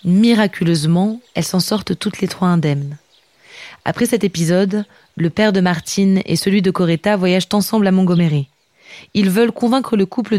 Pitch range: 175-220 Hz